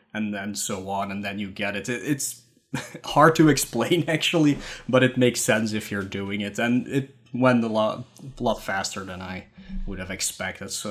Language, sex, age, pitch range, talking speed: English, male, 20-39, 105-130 Hz, 195 wpm